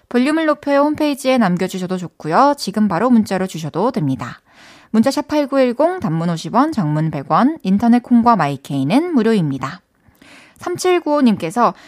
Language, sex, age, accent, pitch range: Korean, female, 20-39, native, 180-255 Hz